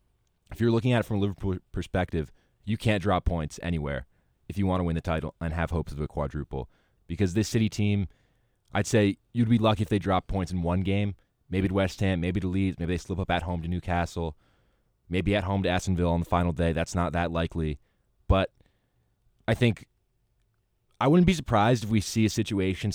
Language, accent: English, American